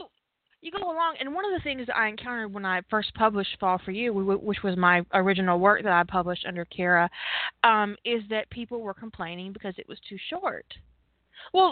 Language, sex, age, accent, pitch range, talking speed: English, female, 20-39, American, 185-250 Hz, 200 wpm